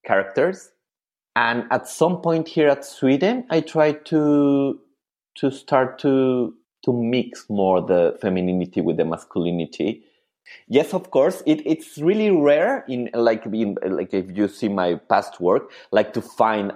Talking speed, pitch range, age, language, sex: 150 wpm, 105-160 Hz, 30-49, English, male